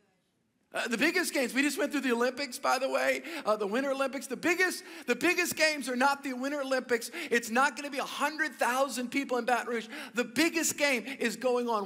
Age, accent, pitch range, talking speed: 50-69, American, 190-270 Hz, 220 wpm